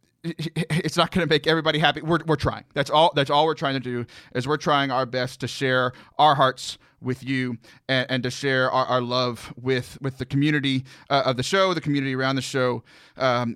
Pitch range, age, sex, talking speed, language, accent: 125-150 Hz, 30-49, male, 220 wpm, English, American